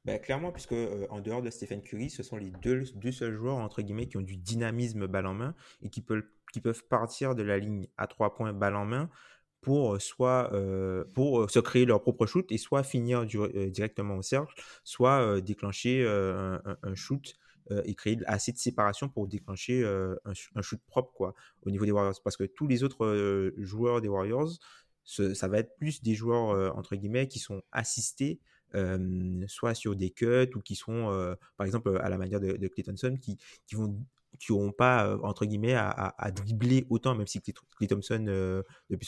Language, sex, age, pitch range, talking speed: French, male, 20-39, 100-125 Hz, 215 wpm